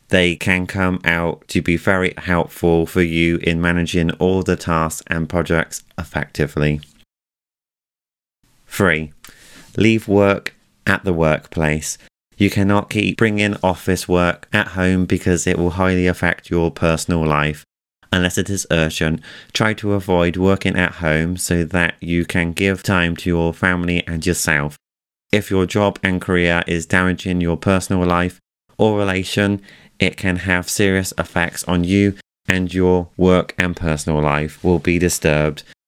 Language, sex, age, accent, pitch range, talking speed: English, male, 30-49, British, 85-95 Hz, 150 wpm